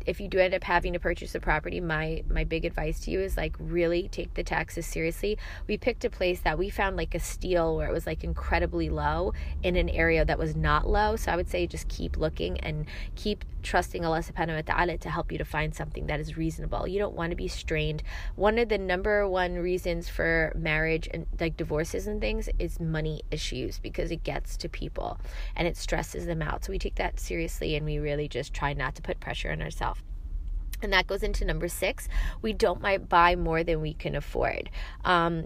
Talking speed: 225 wpm